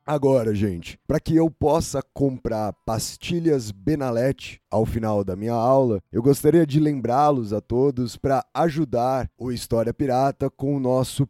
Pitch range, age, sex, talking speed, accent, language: 120-155 Hz, 20-39, male, 150 wpm, Brazilian, Portuguese